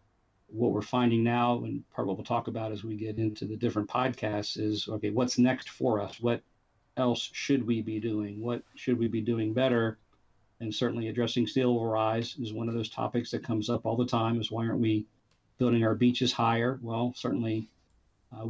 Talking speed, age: 210 wpm, 50-69